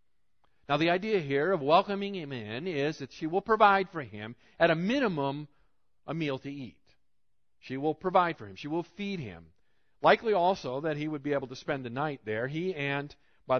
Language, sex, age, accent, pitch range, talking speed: English, male, 50-69, American, 130-175 Hz, 205 wpm